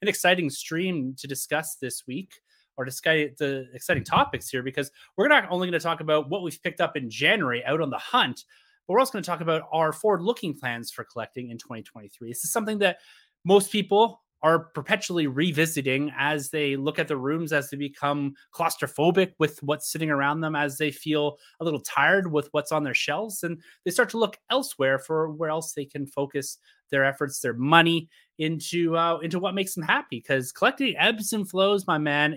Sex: male